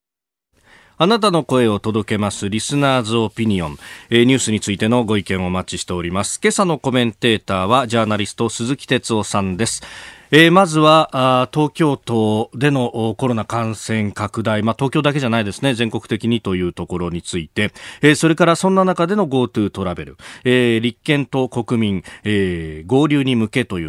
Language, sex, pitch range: Japanese, male, 105-150 Hz